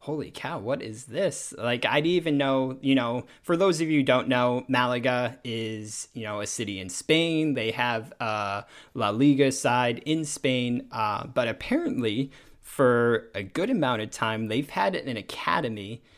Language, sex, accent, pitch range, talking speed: English, male, American, 115-140 Hz, 180 wpm